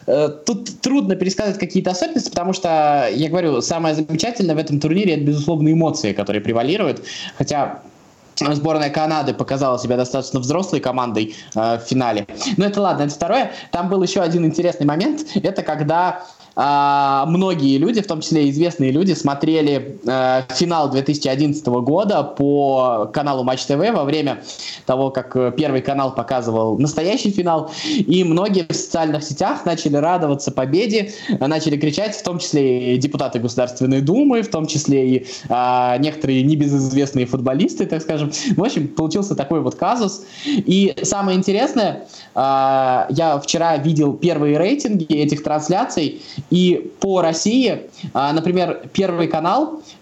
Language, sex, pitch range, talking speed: Russian, male, 135-175 Hz, 145 wpm